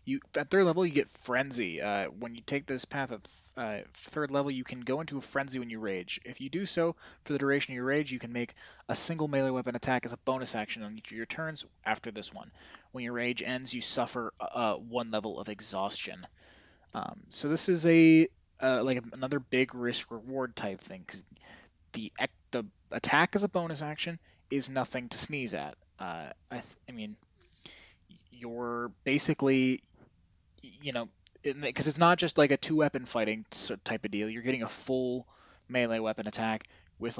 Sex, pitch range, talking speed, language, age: male, 110-145 Hz, 195 wpm, English, 20-39